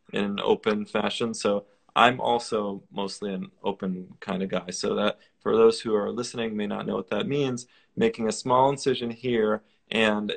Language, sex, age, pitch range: English, male, 20-39, 110-130 Hz